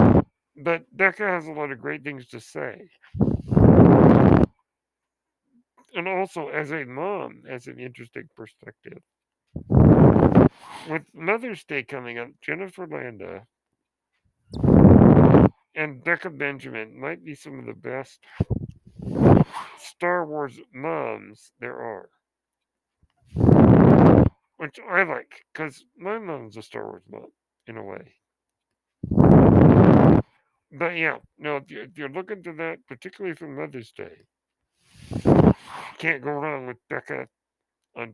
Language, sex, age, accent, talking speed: English, male, 50-69, American, 110 wpm